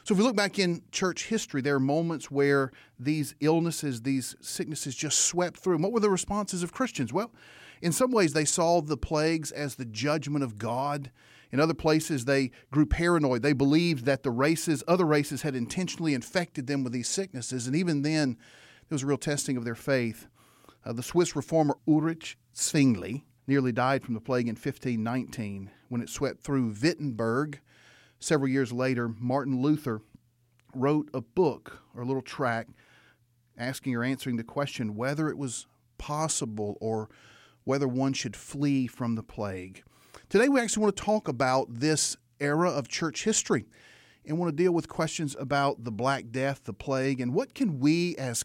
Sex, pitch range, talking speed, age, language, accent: male, 125-155 Hz, 180 wpm, 40-59, English, American